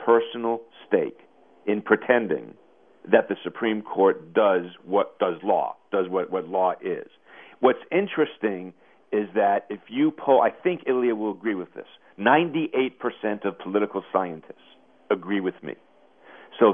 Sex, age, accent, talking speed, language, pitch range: male, 50-69, American, 145 wpm, English, 105-140 Hz